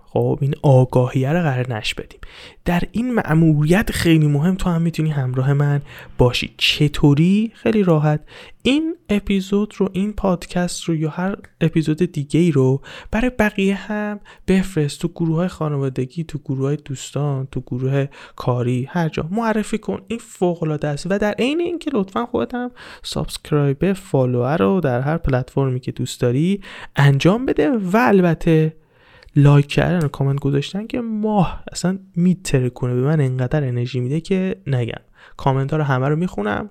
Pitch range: 135-200 Hz